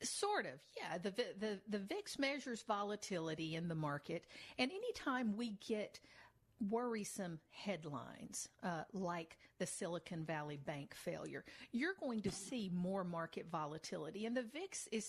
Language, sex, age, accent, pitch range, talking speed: English, female, 50-69, American, 175-220 Hz, 145 wpm